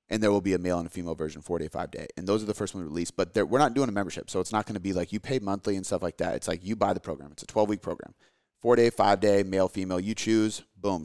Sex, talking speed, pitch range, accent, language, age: male, 305 wpm, 90-110 Hz, American, English, 30-49